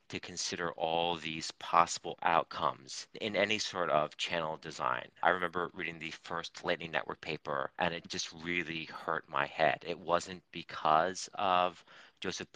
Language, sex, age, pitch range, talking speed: English, male, 40-59, 80-95 Hz, 155 wpm